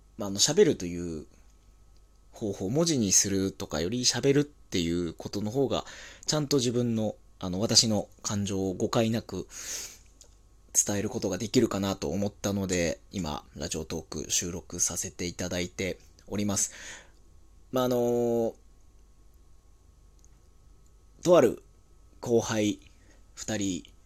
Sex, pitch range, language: male, 85-110 Hz, Japanese